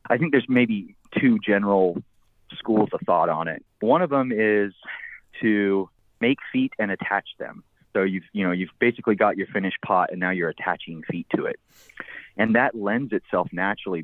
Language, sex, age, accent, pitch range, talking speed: English, male, 30-49, American, 90-105 Hz, 175 wpm